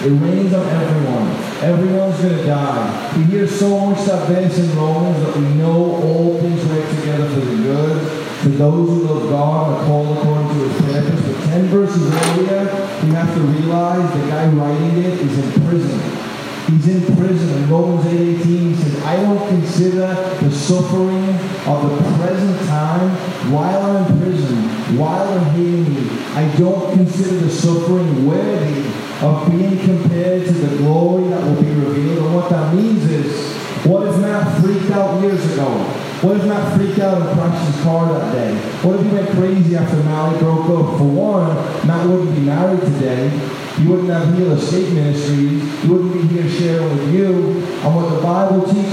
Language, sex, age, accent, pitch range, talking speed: English, male, 30-49, American, 155-185 Hz, 185 wpm